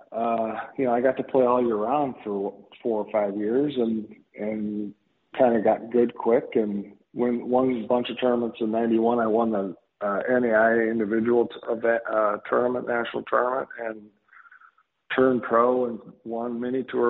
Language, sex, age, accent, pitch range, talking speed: English, male, 40-59, American, 110-125 Hz, 175 wpm